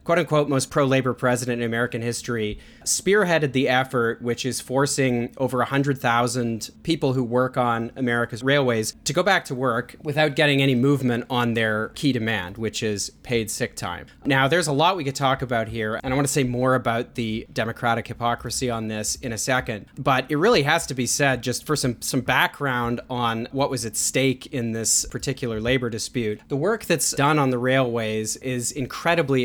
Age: 30-49